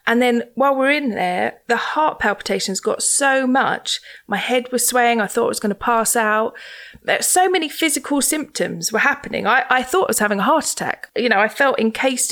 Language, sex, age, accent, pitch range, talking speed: English, female, 30-49, British, 215-280 Hz, 225 wpm